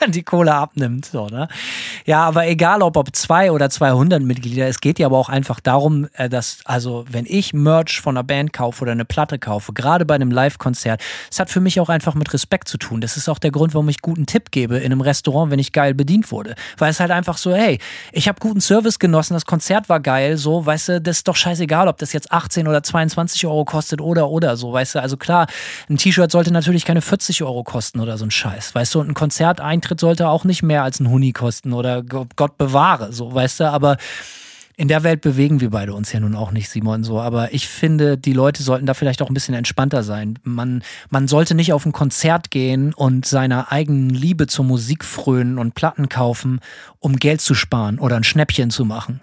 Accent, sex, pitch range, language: German, male, 130-160 Hz, German